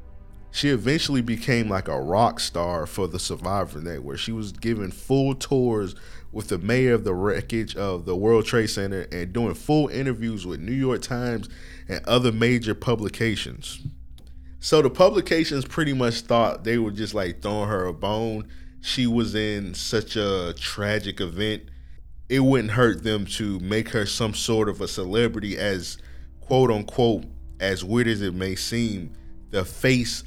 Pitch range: 85-115 Hz